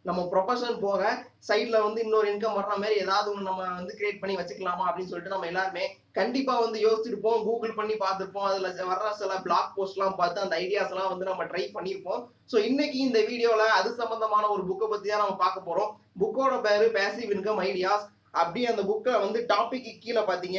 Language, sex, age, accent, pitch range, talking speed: Tamil, male, 20-39, native, 190-225 Hz, 170 wpm